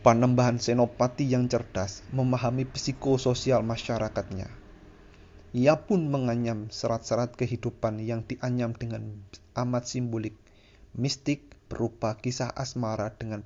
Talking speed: 100 wpm